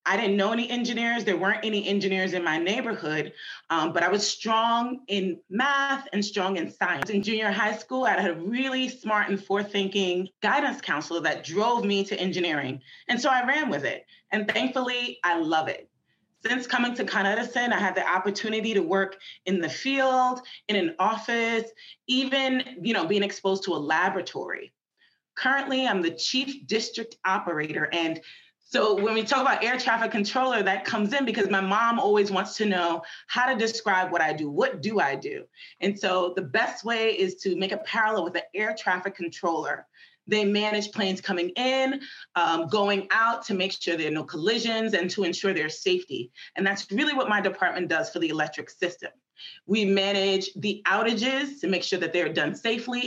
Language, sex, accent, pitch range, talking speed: English, female, American, 185-235 Hz, 190 wpm